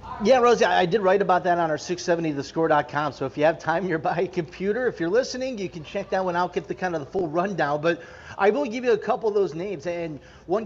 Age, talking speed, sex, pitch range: 30-49, 265 wpm, male, 145-195 Hz